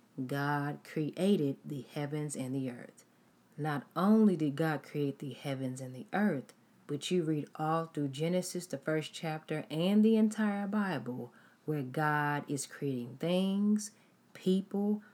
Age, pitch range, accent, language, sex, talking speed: 40-59, 150-200 Hz, American, English, female, 145 wpm